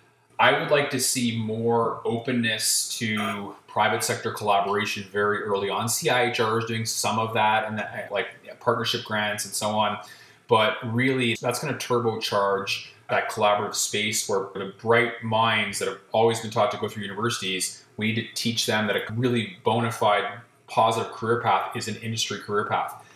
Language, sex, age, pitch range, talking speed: English, male, 30-49, 105-120 Hz, 180 wpm